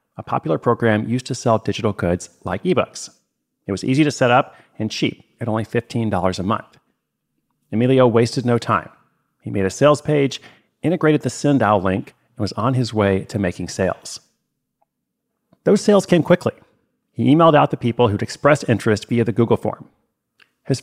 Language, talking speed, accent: English, 175 wpm, American